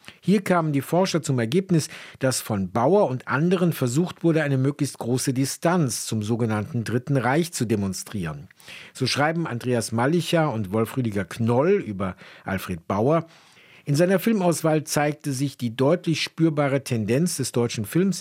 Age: 50-69